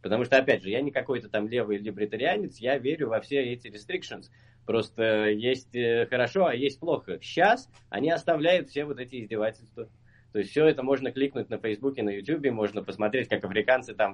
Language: English